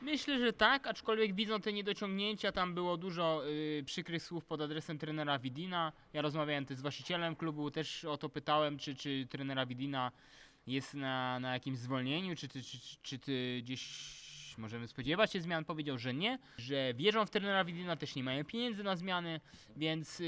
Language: English